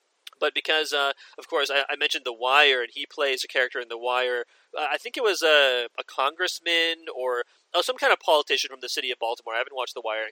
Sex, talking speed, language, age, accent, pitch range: male, 250 wpm, English, 30-49, American, 130-210 Hz